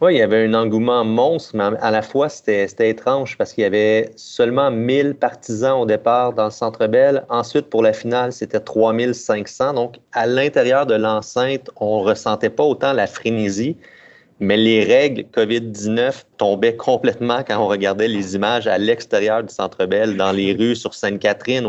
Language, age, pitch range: French, 30-49, 105-115 Hz